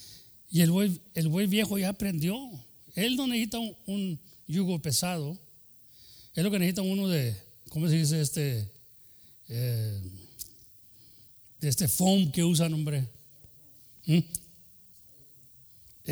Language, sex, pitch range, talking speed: English, male, 120-200 Hz, 120 wpm